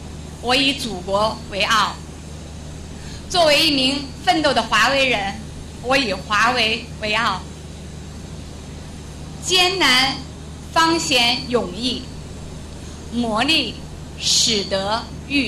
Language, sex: Chinese, female